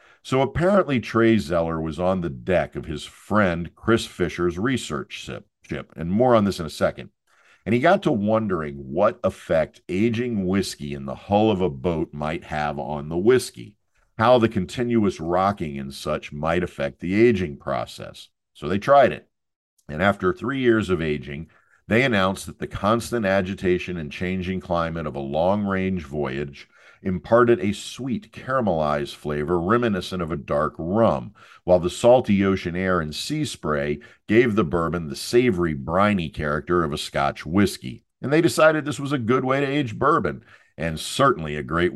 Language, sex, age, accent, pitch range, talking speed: English, male, 50-69, American, 80-115 Hz, 170 wpm